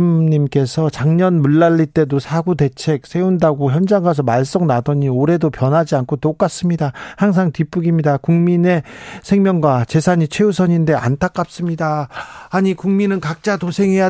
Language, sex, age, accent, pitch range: Korean, male, 40-59, native, 135-170 Hz